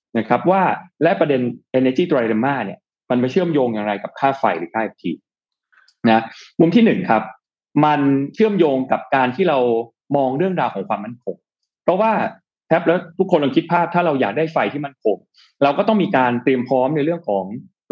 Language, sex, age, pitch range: Thai, male, 20-39, 120-170 Hz